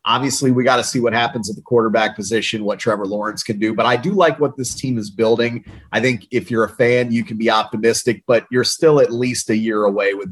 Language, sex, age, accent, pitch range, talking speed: English, male, 30-49, American, 110-140 Hz, 255 wpm